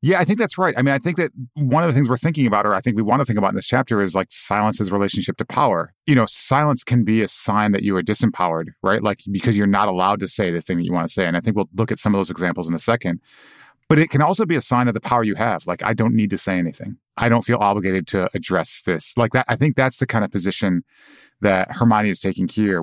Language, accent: English, American